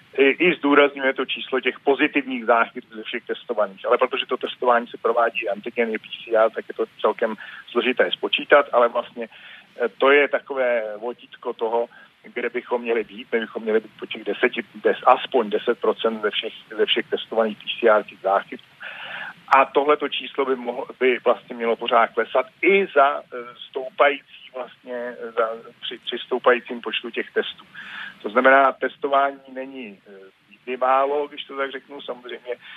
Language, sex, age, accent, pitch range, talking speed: Czech, male, 40-59, native, 120-140 Hz, 150 wpm